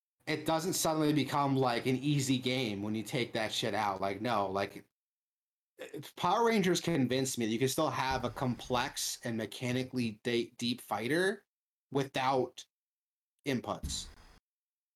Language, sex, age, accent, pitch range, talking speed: English, male, 30-49, American, 110-135 Hz, 140 wpm